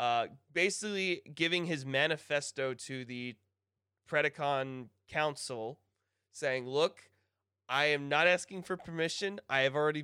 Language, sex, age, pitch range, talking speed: English, male, 20-39, 115-150 Hz, 120 wpm